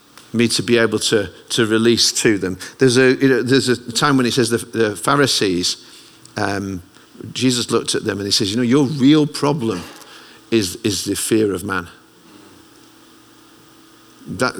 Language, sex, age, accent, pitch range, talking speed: English, male, 50-69, British, 105-130 Hz, 175 wpm